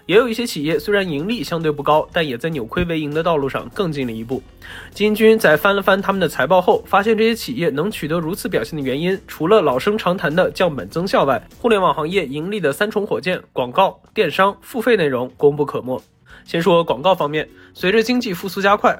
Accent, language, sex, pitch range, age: native, Chinese, male, 145-195 Hz, 20-39